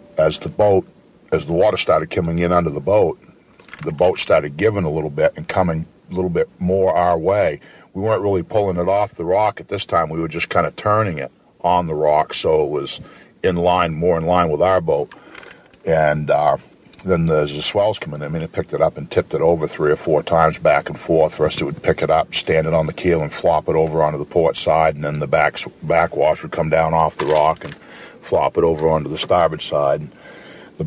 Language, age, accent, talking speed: English, 50-69, American, 240 wpm